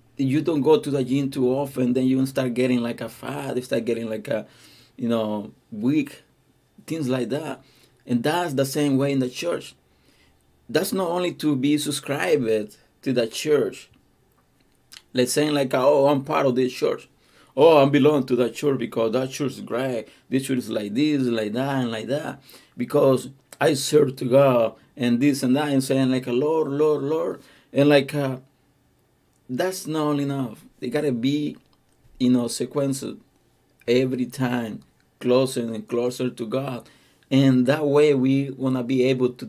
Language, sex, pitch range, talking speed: Spanish, male, 125-145 Hz, 180 wpm